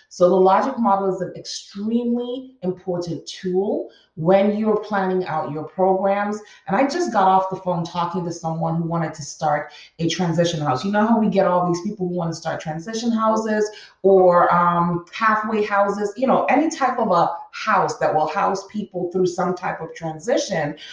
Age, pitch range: 30-49, 170-210 Hz